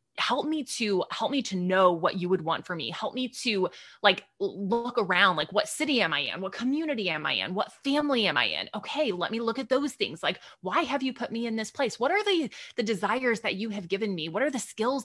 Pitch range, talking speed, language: 180-230 Hz, 260 wpm, English